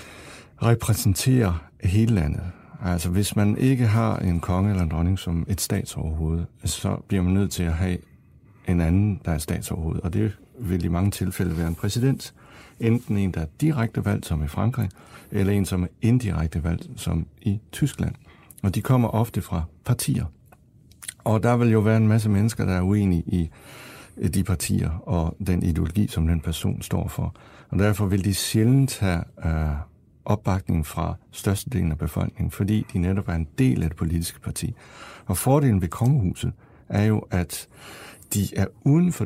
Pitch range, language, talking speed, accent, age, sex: 85-110 Hz, Danish, 175 wpm, native, 60-79, male